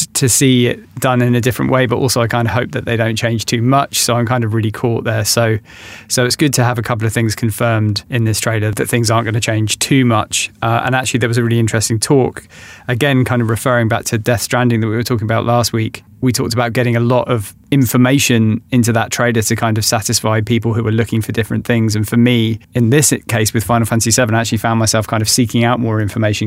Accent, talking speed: British, 260 wpm